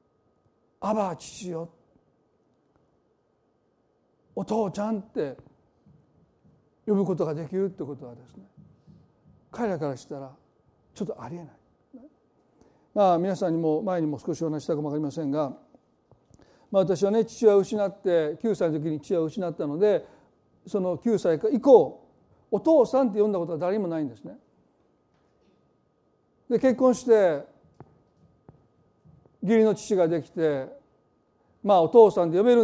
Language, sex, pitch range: Japanese, male, 170-245 Hz